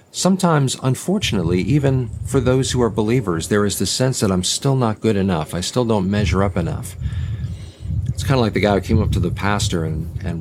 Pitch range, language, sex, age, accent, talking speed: 95-115 Hz, English, male, 50-69, American, 220 wpm